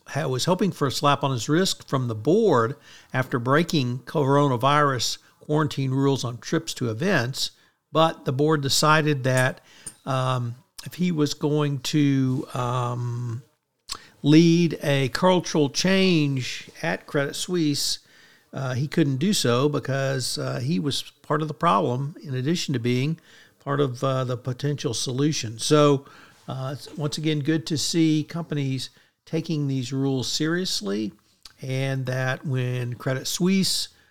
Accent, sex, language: American, male, English